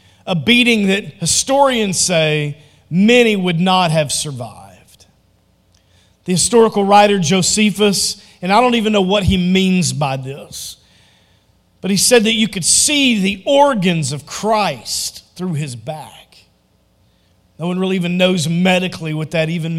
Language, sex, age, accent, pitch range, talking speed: English, male, 40-59, American, 150-235 Hz, 145 wpm